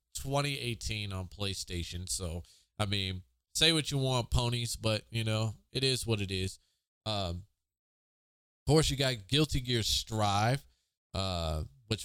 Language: English